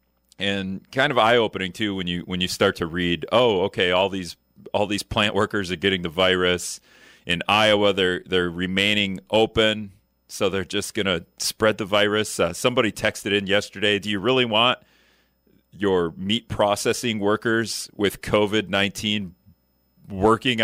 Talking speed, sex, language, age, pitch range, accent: 160 wpm, male, English, 30-49, 95-115 Hz, American